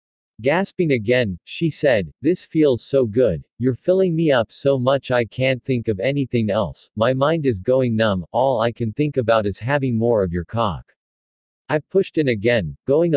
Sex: male